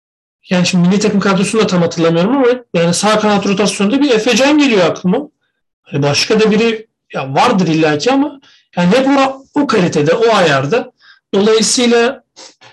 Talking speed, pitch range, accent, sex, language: 145 wpm, 165-220 Hz, native, male, Turkish